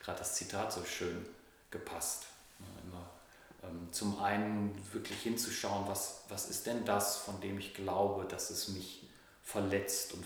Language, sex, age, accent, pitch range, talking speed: German, male, 40-59, German, 90-105 Hz, 160 wpm